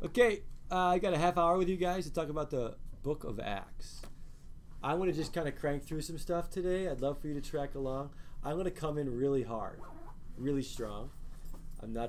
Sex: male